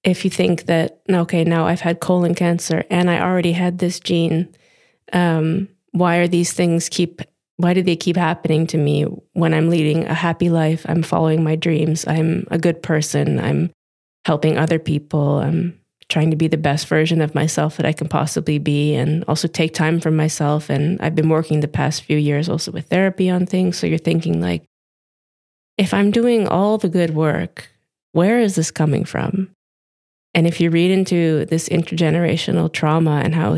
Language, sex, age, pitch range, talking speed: English, female, 20-39, 150-170 Hz, 190 wpm